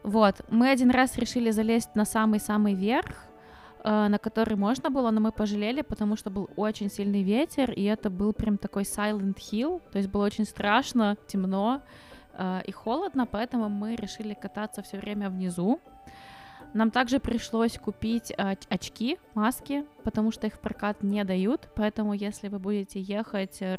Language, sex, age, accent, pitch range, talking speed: Russian, female, 20-39, native, 205-230 Hz, 160 wpm